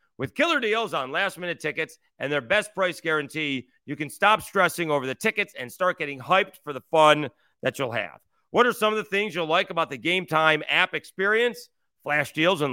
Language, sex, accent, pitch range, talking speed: English, male, American, 155-215 Hz, 210 wpm